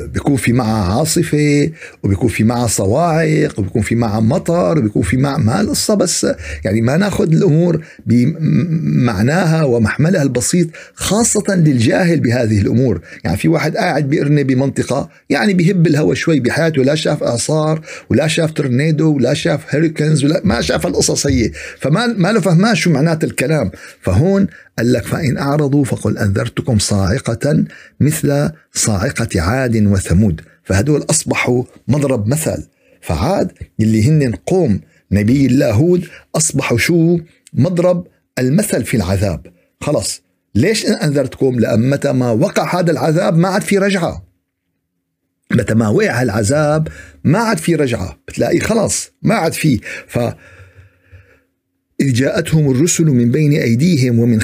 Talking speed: 130 wpm